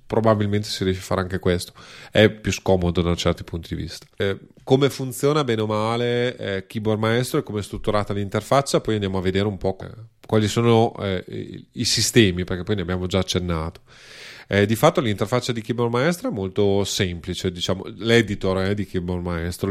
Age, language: 30-49, Italian